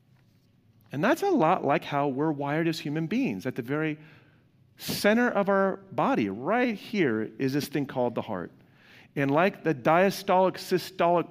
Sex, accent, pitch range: male, American, 135-210 Hz